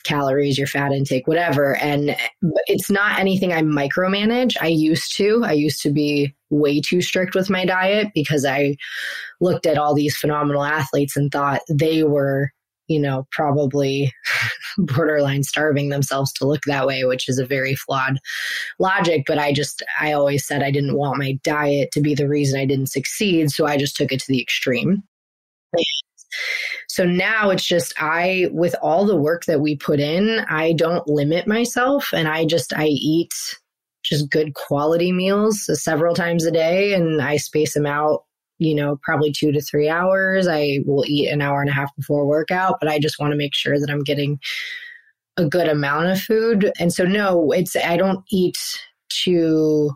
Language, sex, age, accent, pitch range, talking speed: English, female, 20-39, American, 145-180 Hz, 185 wpm